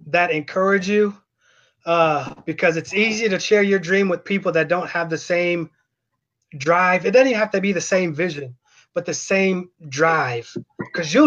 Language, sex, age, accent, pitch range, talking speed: English, male, 30-49, American, 160-205 Hz, 175 wpm